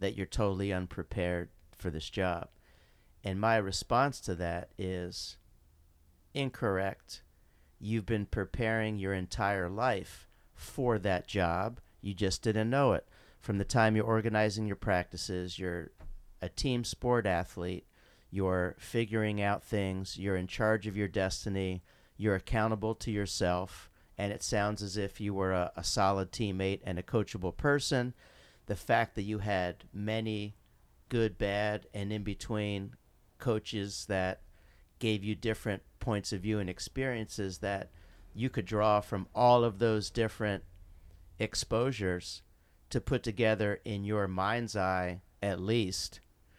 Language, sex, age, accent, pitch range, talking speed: English, male, 40-59, American, 90-110 Hz, 140 wpm